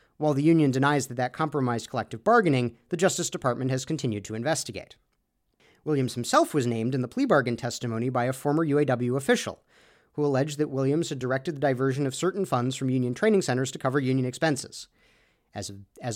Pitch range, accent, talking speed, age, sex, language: 125-170 Hz, American, 185 wpm, 40-59, male, English